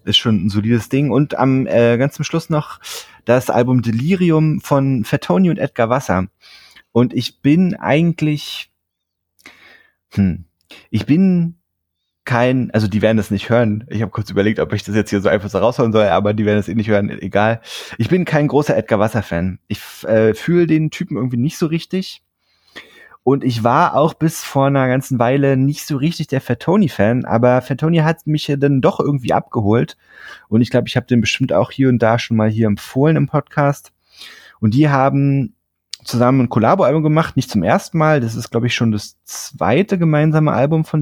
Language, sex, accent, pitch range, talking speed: German, male, German, 105-145 Hz, 195 wpm